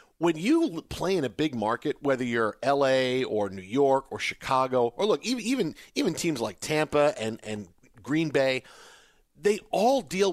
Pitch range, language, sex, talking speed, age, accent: 130-180 Hz, English, male, 175 wpm, 40-59, American